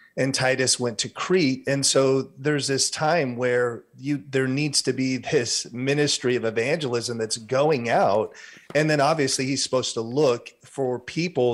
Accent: American